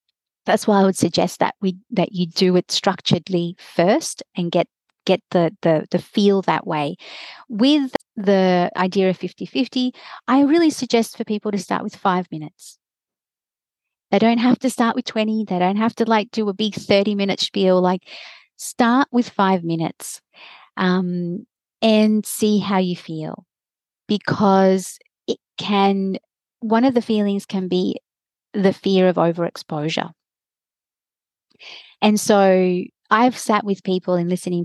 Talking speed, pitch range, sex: 150 wpm, 185-230 Hz, female